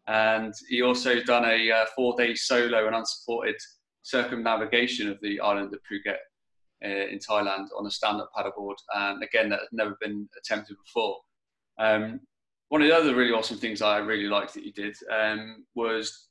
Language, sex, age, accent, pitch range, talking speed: English, male, 20-39, British, 105-120 Hz, 175 wpm